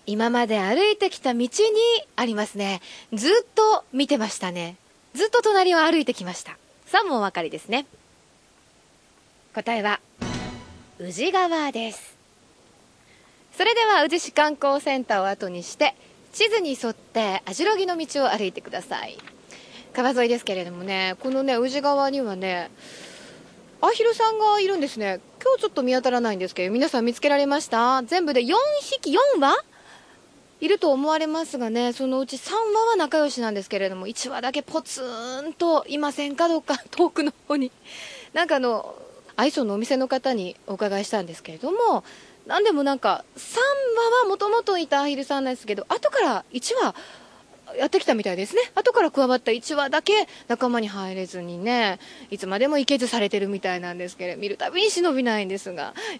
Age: 20-39